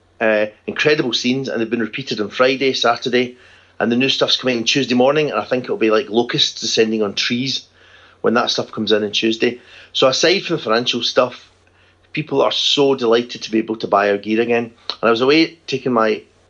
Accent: British